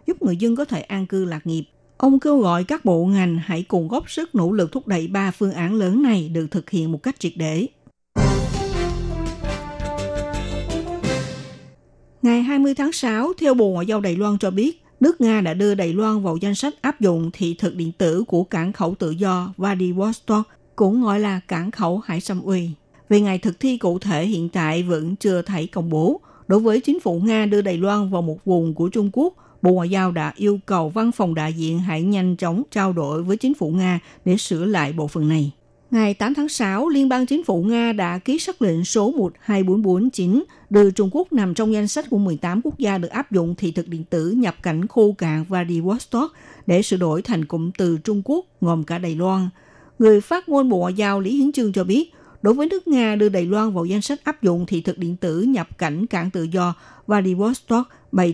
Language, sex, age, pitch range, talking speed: Vietnamese, female, 50-69, 170-220 Hz, 220 wpm